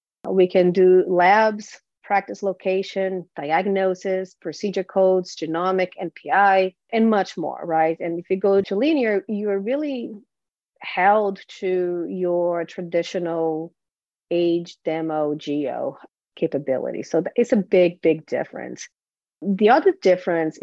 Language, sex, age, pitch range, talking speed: English, female, 40-59, 165-205 Hz, 120 wpm